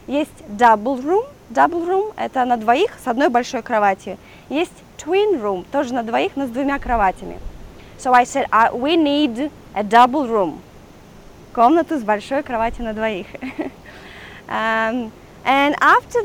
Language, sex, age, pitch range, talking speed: Russian, female, 20-39, 225-280 Hz, 150 wpm